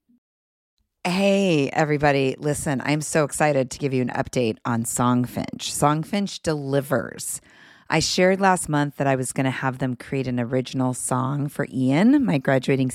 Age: 30-49